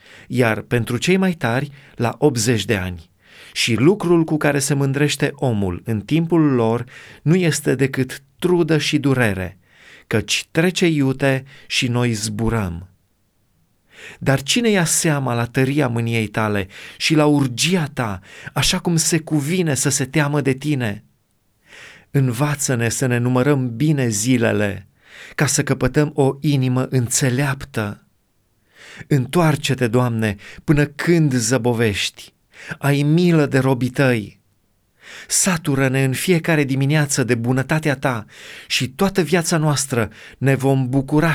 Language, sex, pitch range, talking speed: Romanian, male, 120-150 Hz, 130 wpm